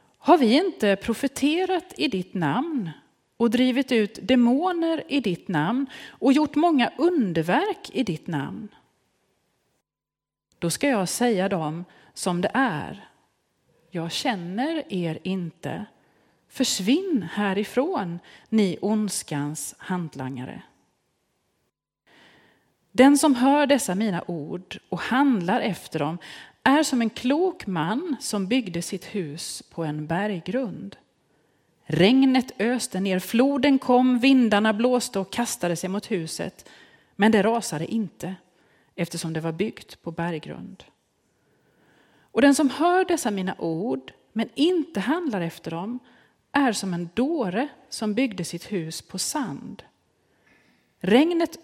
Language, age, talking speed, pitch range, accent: Swedish, 30-49, 120 wpm, 180-270 Hz, native